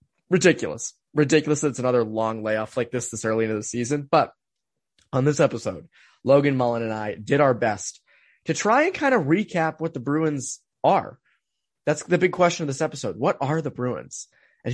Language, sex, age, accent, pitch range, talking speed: English, male, 20-39, American, 115-170 Hz, 190 wpm